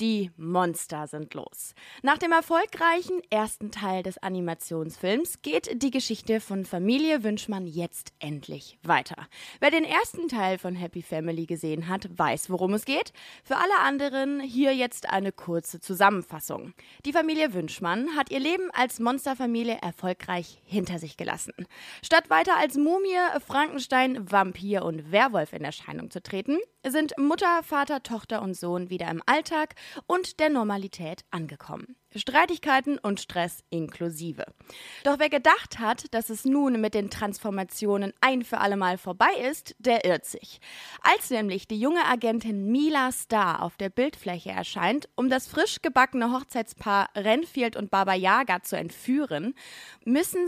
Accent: German